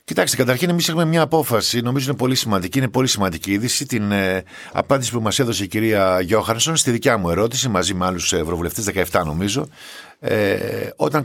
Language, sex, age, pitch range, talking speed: Greek, male, 50-69, 95-135 Hz, 185 wpm